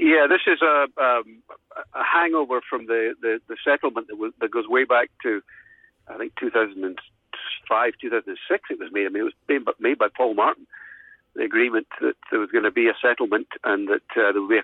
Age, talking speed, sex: 60-79, 225 wpm, male